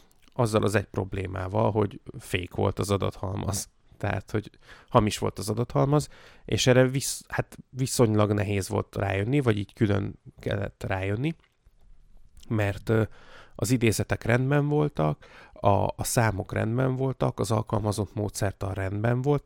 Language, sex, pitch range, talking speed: Hungarian, male, 100-125 Hz, 135 wpm